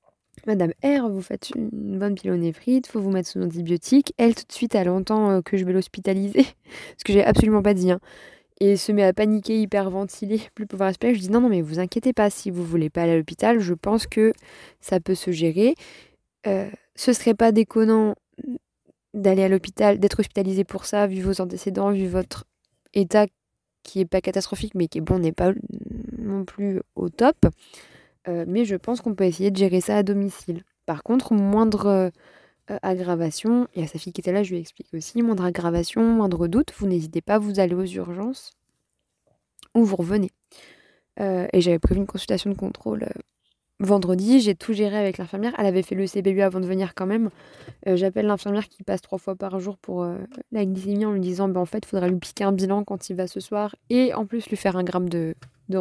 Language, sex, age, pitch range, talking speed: French, female, 20-39, 185-215 Hz, 215 wpm